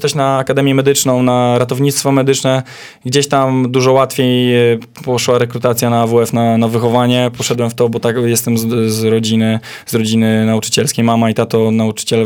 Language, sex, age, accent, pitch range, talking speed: Polish, male, 10-29, native, 115-135 Hz, 165 wpm